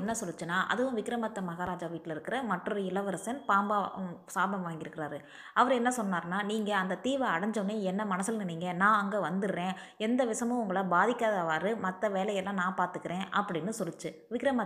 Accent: native